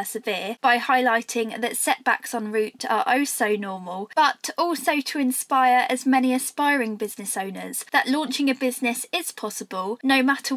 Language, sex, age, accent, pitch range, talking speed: English, female, 20-39, British, 215-270 Hz, 160 wpm